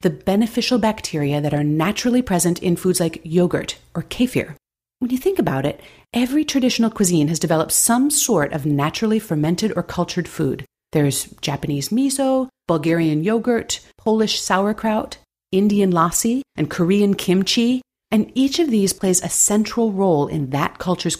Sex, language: female, English